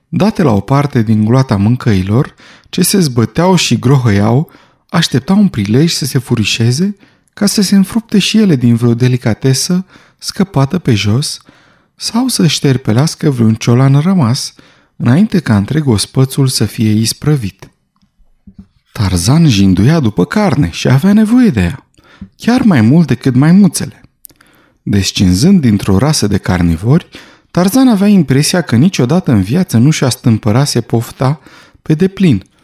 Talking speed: 140 wpm